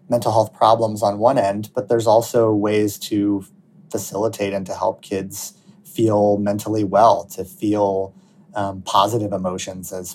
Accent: American